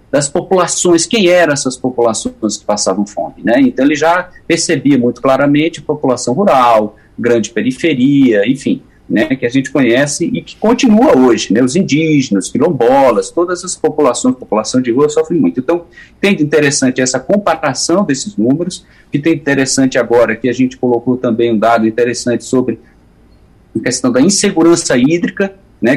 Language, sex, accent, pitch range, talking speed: Portuguese, male, Brazilian, 125-180 Hz, 160 wpm